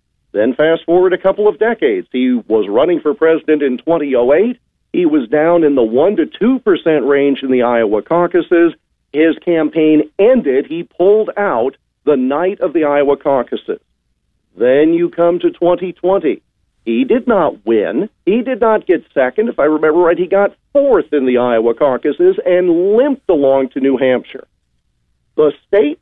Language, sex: English, male